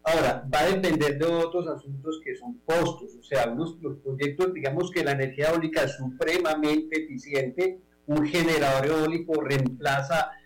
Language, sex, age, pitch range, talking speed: Spanish, male, 40-59, 140-165 Hz, 150 wpm